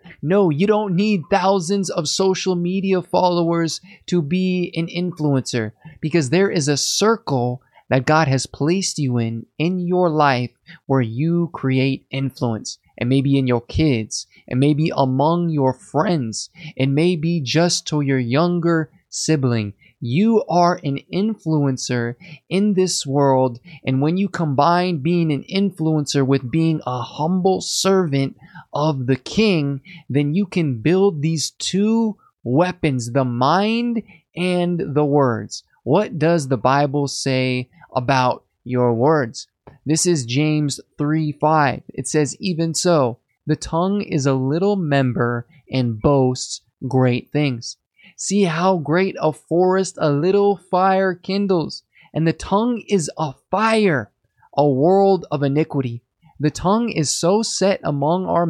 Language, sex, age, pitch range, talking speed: English, male, 20-39, 130-180 Hz, 135 wpm